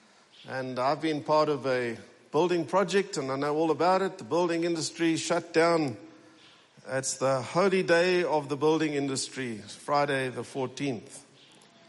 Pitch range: 140-200 Hz